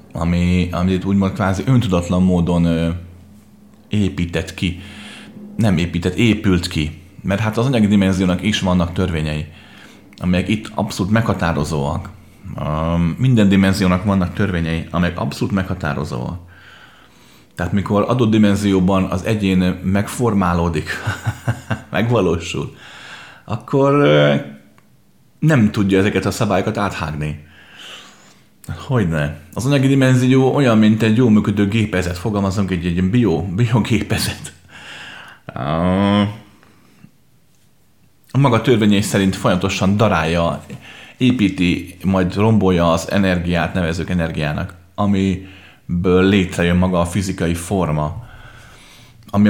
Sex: male